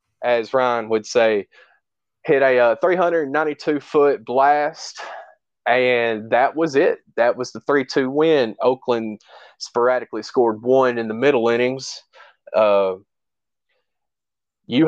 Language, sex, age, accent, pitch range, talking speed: English, male, 20-39, American, 110-140 Hz, 115 wpm